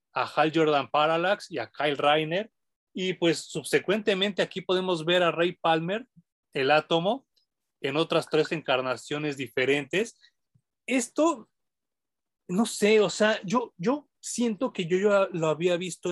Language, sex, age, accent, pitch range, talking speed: Spanish, male, 30-49, Mexican, 140-190 Hz, 140 wpm